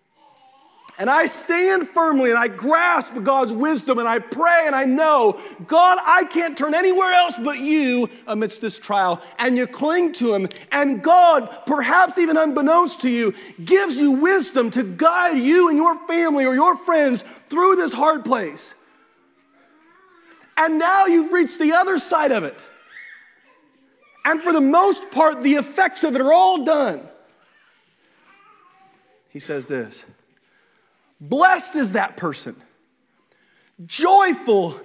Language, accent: English, American